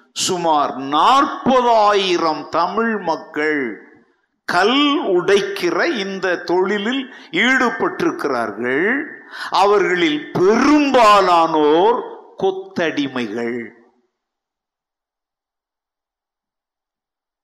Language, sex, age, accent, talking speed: Tamil, male, 50-69, native, 40 wpm